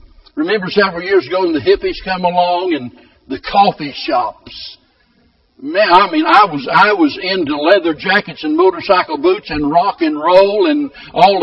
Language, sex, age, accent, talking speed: English, male, 60-79, American, 170 wpm